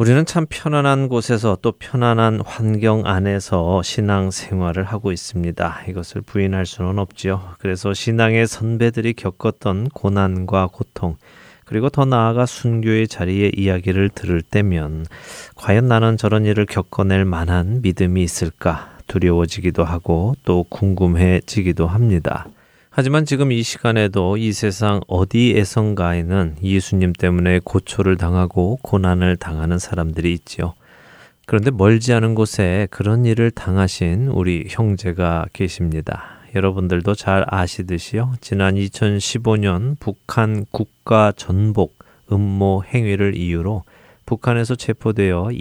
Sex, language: male, Korean